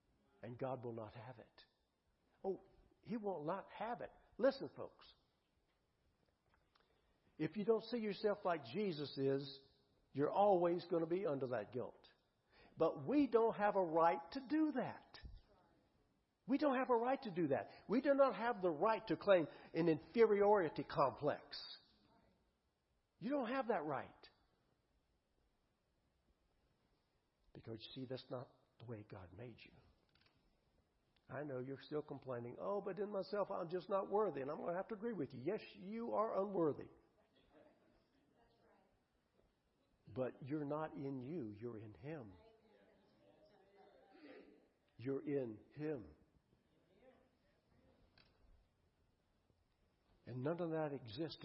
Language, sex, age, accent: English, male, 60-79, American